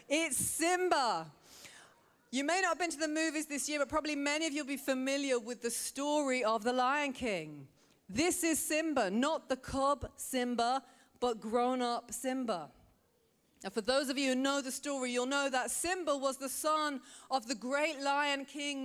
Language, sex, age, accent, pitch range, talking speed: English, female, 40-59, British, 235-295 Hz, 185 wpm